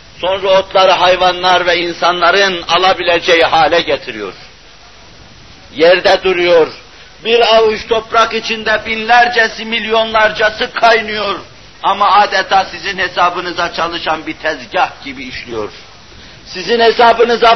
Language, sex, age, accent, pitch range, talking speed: Turkish, male, 60-79, native, 190-225 Hz, 95 wpm